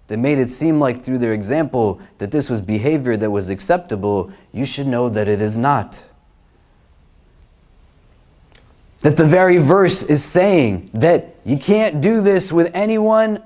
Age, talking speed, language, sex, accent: 30-49, 155 wpm, English, male, American